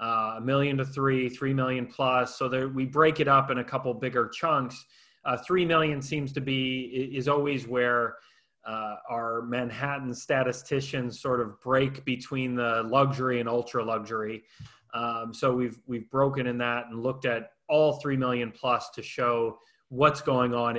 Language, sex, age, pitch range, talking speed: English, male, 30-49, 120-140 Hz, 175 wpm